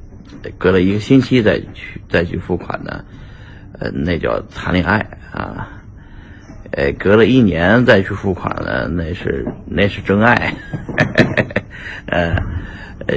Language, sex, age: Chinese, male, 50-69